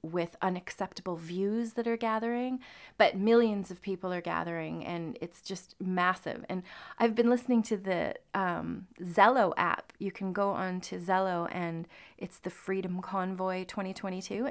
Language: English